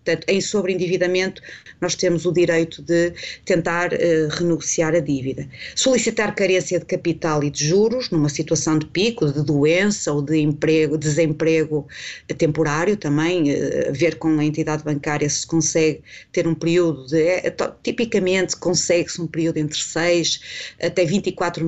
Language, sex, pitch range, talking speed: Portuguese, female, 155-185 Hz, 145 wpm